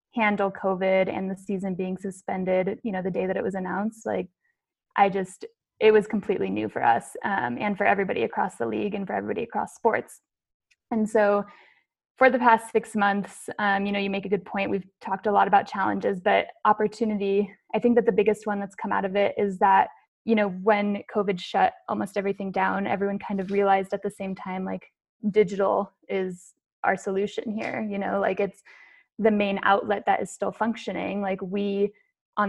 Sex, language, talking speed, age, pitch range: female, English, 200 wpm, 20-39, 195-215 Hz